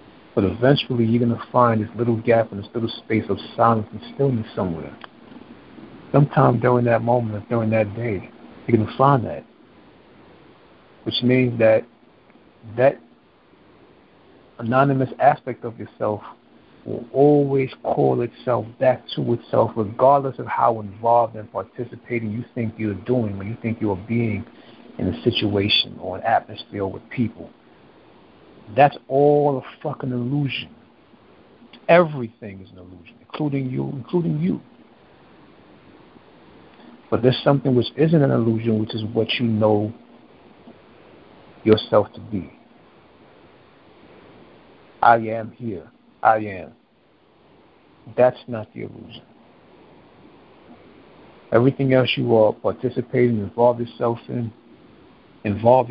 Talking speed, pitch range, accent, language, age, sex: 125 wpm, 110-125 Hz, American, English, 60-79, male